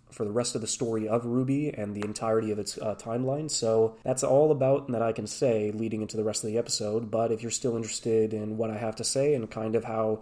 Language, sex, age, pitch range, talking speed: English, male, 20-39, 110-125 Hz, 265 wpm